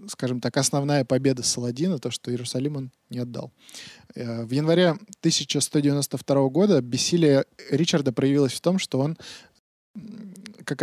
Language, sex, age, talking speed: Russian, male, 20-39, 130 wpm